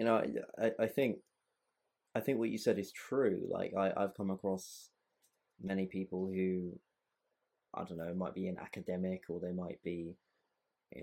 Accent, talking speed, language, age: British, 175 wpm, English, 20-39